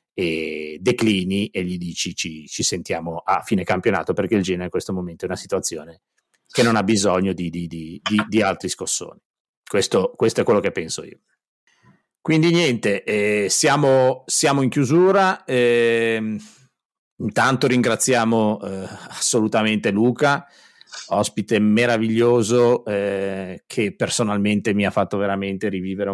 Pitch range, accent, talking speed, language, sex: 95-125 Hz, native, 140 wpm, Italian, male